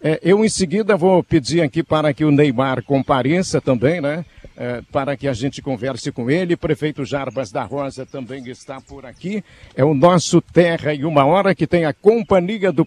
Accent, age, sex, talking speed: Brazilian, 60-79, male, 185 wpm